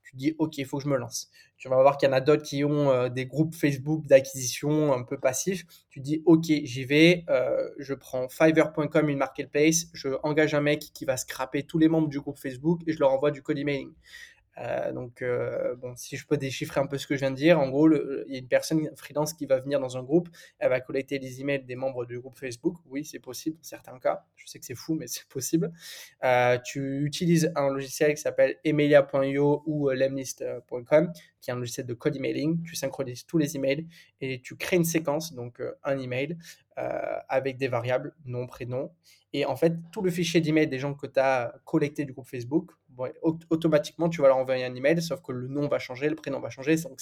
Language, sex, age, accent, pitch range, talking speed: French, male, 20-39, French, 130-155 Hz, 235 wpm